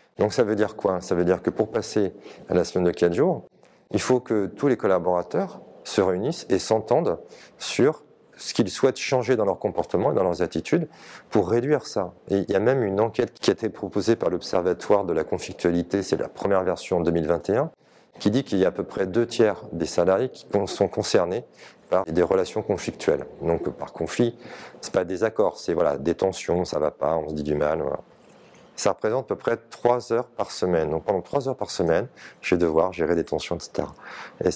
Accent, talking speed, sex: French, 220 wpm, male